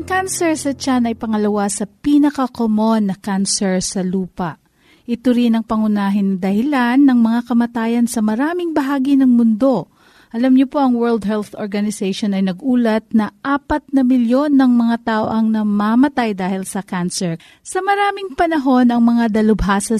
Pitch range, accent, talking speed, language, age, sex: 220-285 Hz, native, 155 wpm, Filipino, 40-59, female